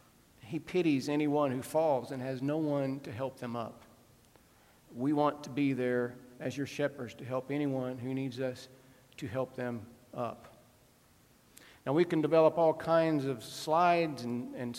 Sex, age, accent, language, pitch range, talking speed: male, 50-69, American, English, 135-165 Hz, 165 wpm